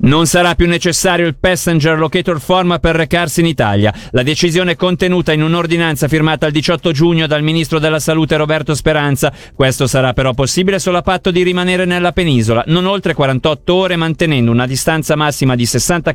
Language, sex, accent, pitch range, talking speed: Italian, male, native, 140-175 Hz, 180 wpm